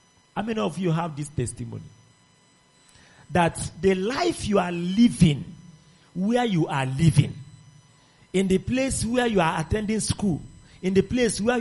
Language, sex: English, male